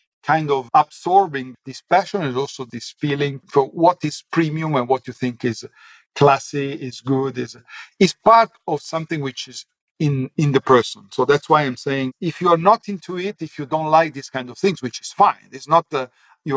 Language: English